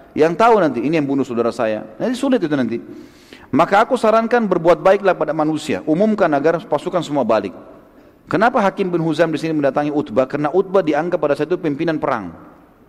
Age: 40-59